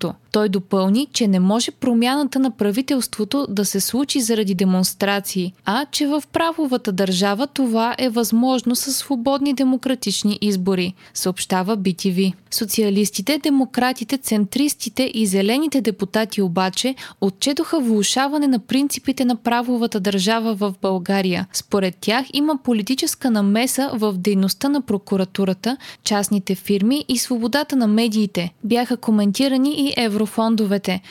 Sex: female